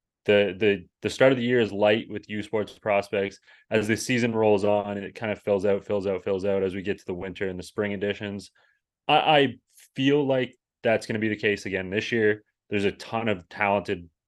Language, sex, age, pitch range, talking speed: English, male, 20-39, 95-105 Hz, 230 wpm